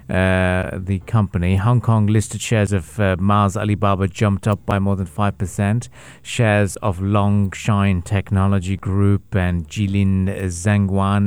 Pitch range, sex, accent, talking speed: 100-120 Hz, male, British, 135 wpm